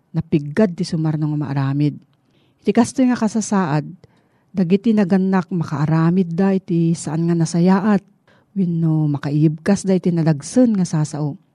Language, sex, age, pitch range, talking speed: Filipino, female, 40-59, 155-200 Hz, 130 wpm